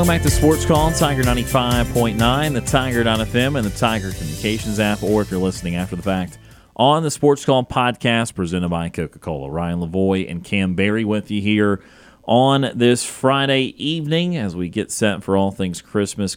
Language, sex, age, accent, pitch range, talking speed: English, male, 30-49, American, 90-105 Hz, 180 wpm